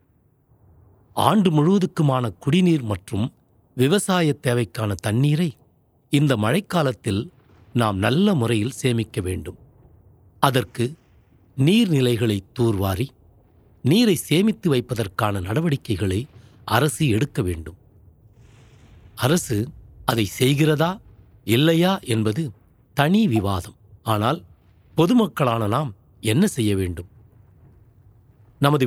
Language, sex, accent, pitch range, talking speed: Tamil, male, native, 105-145 Hz, 75 wpm